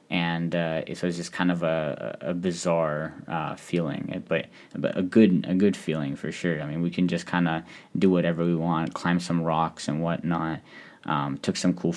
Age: 10-29